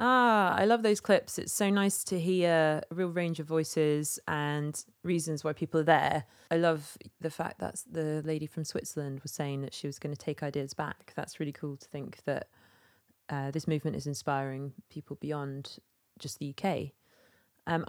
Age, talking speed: 20-39, 190 wpm